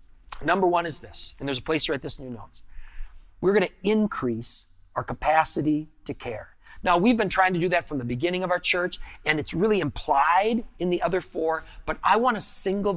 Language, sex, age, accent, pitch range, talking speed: English, male, 40-59, American, 125-175 Hz, 220 wpm